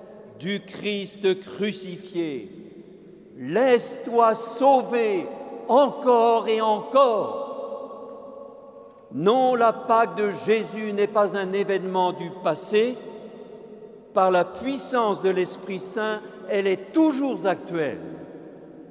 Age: 50-69